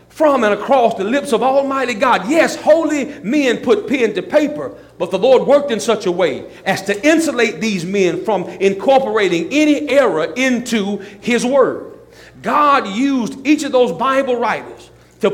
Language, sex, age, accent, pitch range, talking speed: English, male, 40-59, American, 200-290 Hz, 170 wpm